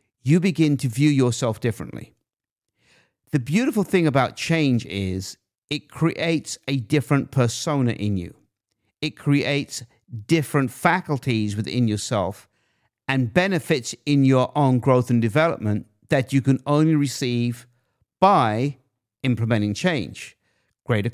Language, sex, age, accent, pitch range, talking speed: English, male, 50-69, British, 115-150 Hz, 120 wpm